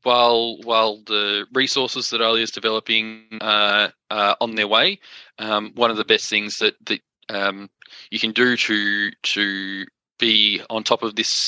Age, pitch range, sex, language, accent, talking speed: 20-39, 105-125 Hz, male, English, Australian, 165 wpm